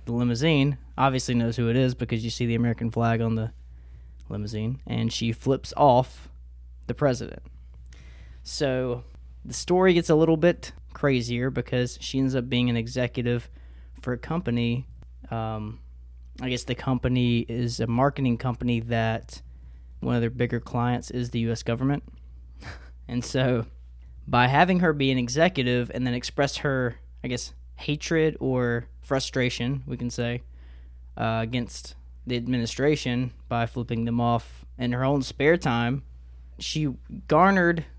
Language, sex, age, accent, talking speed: English, male, 20-39, American, 150 wpm